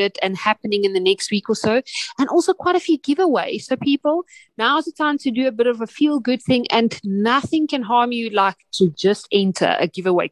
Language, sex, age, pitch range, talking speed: English, female, 30-49, 205-295 Hz, 220 wpm